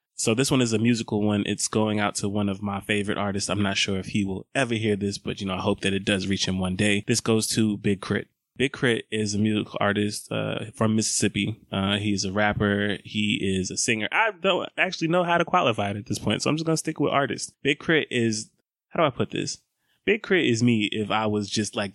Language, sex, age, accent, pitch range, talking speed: English, male, 20-39, American, 100-115 Hz, 260 wpm